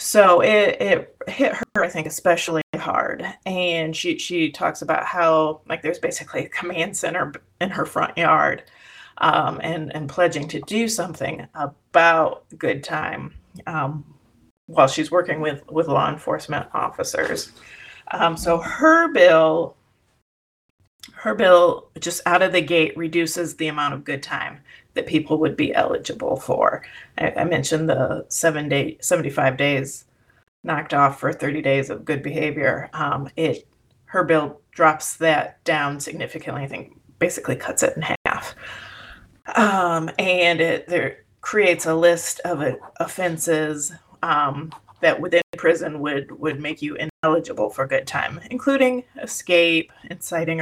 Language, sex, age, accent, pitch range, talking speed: English, female, 30-49, American, 150-175 Hz, 145 wpm